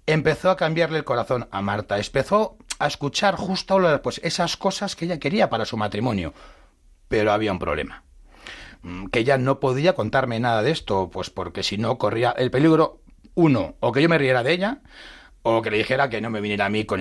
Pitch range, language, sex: 110-160 Hz, Spanish, male